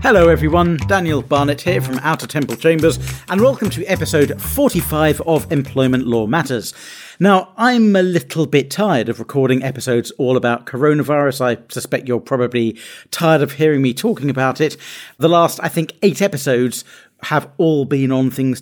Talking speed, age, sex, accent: 170 wpm, 40-59, male, British